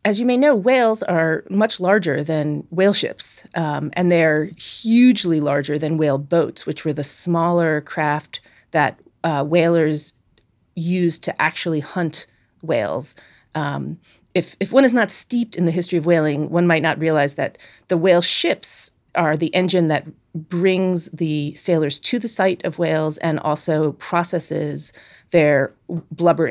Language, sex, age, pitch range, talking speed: English, female, 30-49, 150-180 Hz, 155 wpm